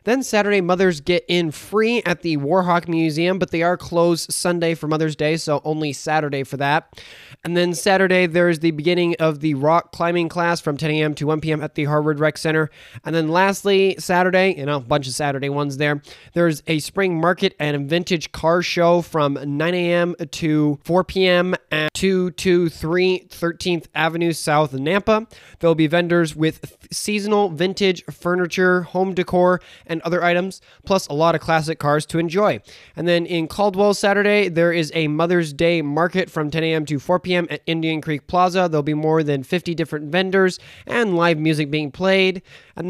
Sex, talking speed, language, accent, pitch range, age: male, 185 wpm, English, American, 155-180 Hz, 20-39